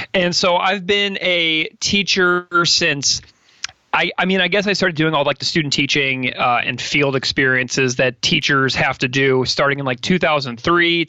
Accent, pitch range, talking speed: American, 130-165 Hz, 180 wpm